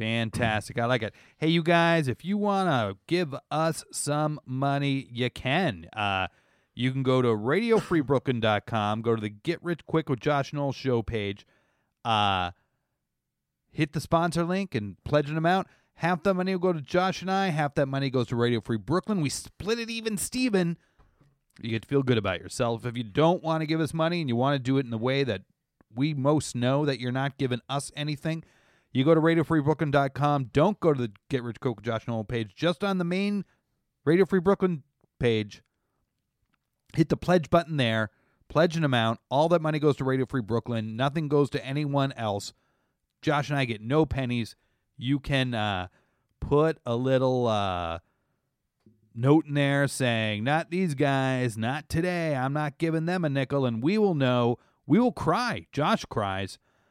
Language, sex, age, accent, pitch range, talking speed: English, male, 30-49, American, 120-160 Hz, 190 wpm